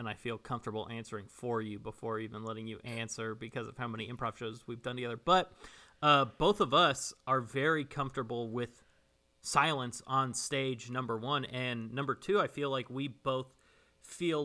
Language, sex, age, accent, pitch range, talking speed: English, male, 30-49, American, 110-135 Hz, 185 wpm